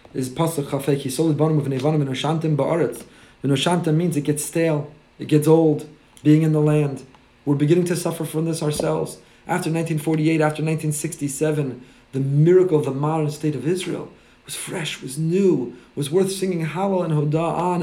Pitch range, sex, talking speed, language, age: 140-165 Hz, male, 140 wpm, English, 30-49